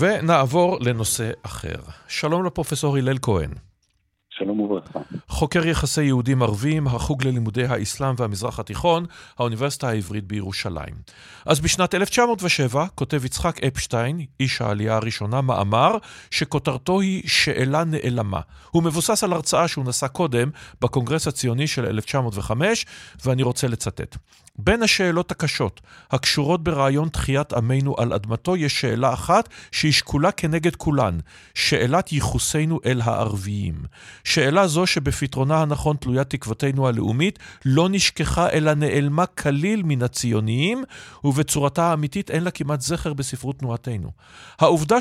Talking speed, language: 120 wpm, Hebrew